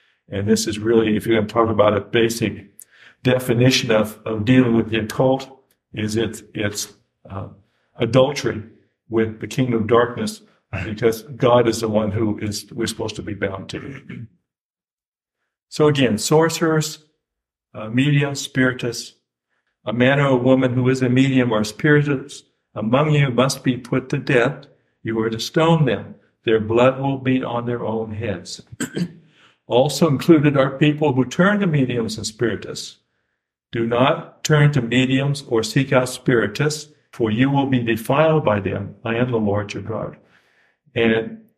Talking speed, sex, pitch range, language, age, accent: 160 wpm, male, 110-140 Hz, English, 60-79, American